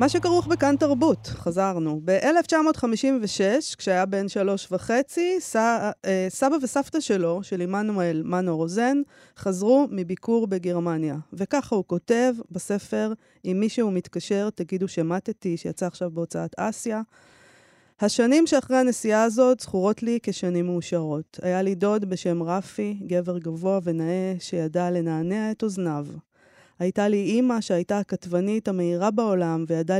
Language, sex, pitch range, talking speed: Hebrew, female, 175-225 Hz, 125 wpm